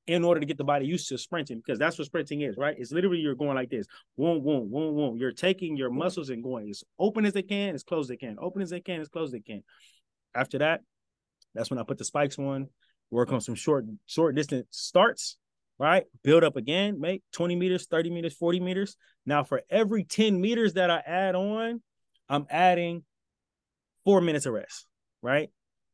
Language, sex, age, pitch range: English, male, 20-39, 140-185 Hz